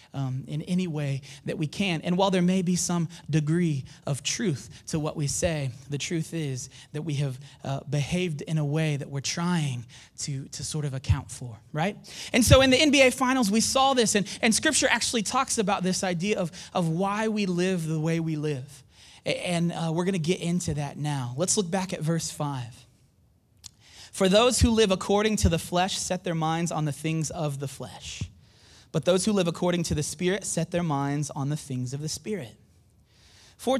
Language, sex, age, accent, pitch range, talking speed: English, male, 30-49, American, 140-190 Hz, 205 wpm